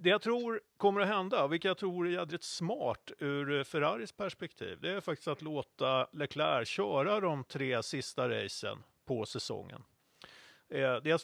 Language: Swedish